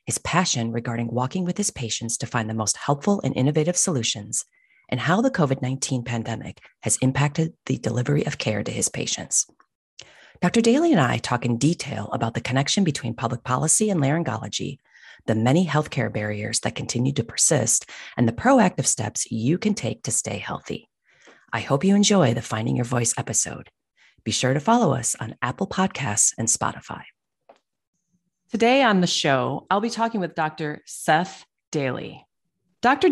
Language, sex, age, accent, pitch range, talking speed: English, female, 40-59, American, 130-185 Hz, 170 wpm